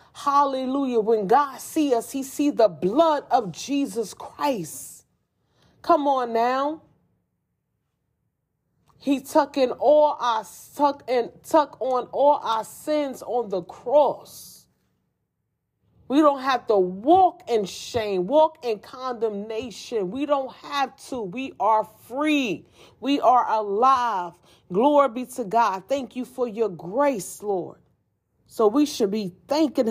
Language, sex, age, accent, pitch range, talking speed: English, female, 40-59, American, 175-265 Hz, 130 wpm